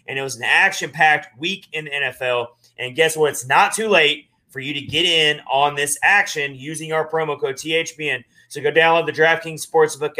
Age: 30-49